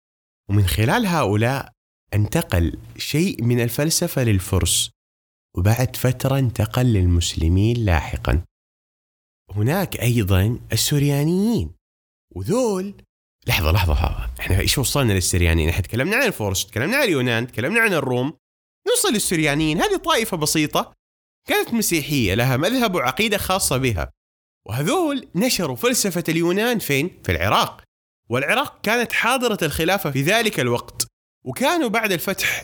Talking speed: 115 wpm